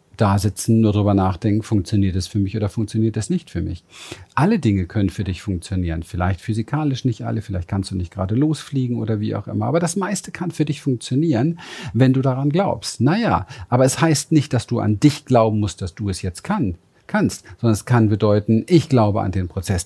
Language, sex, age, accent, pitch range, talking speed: German, male, 40-59, German, 105-130 Hz, 220 wpm